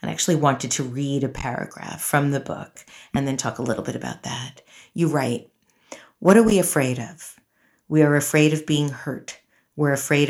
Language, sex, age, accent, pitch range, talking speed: English, female, 50-69, American, 135-150 Hz, 190 wpm